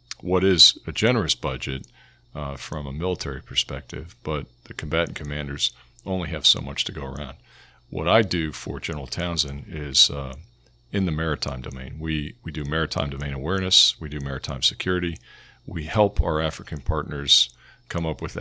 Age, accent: 50-69, American